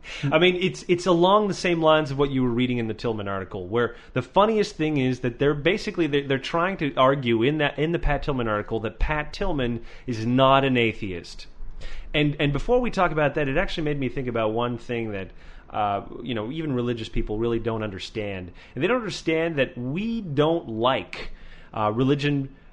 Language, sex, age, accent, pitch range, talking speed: English, male, 30-49, American, 120-175 Hz, 210 wpm